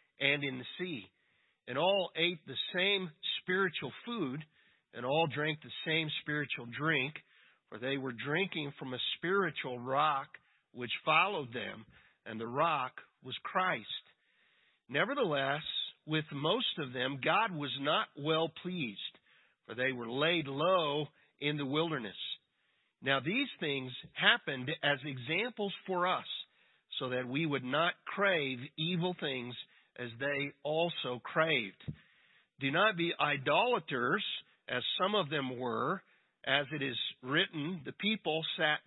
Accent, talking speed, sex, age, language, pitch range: American, 135 wpm, male, 50-69, English, 135-170 Hz